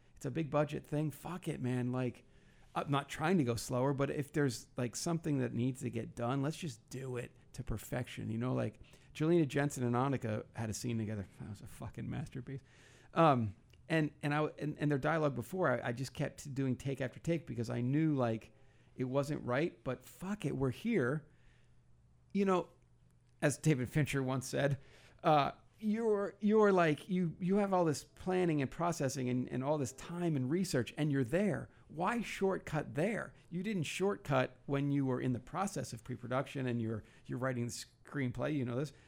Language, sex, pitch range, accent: English, male, 125-155 Hz, American